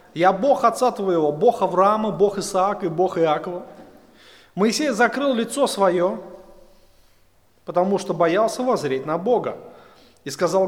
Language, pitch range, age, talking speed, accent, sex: Russian, 180-245 Hz, 30-49, 130 wpm, native, male